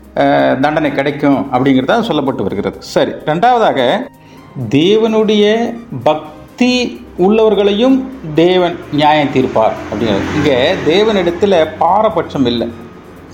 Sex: male